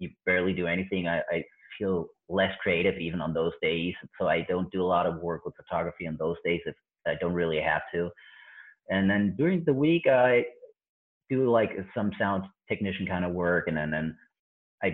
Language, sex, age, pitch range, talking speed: English, male, 30-49, 95-115 Hz, 200 wpm